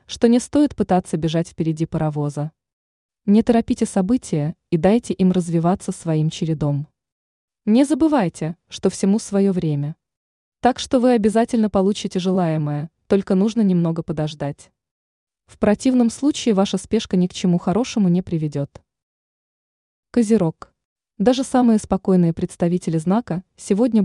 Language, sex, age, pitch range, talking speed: Russian, female, 20-39, 170-225 Hz, 125 wpm